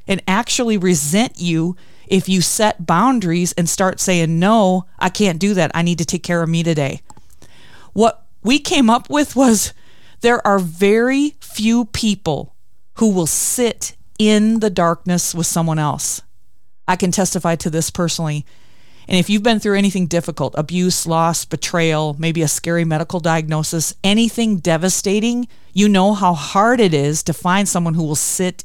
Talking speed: 165 wpm